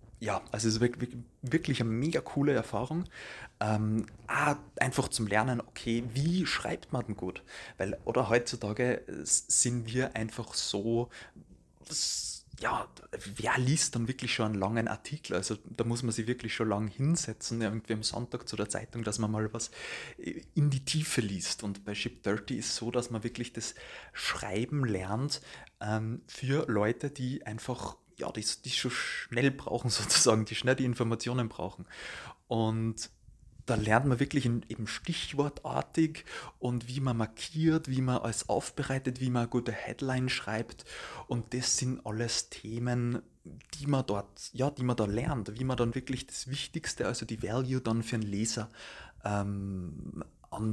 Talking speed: 165 wpm